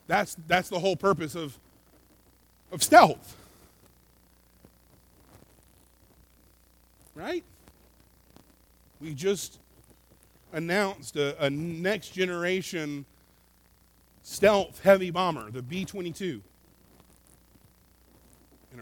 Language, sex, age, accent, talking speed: English, male, 40-59, American, 65 wpm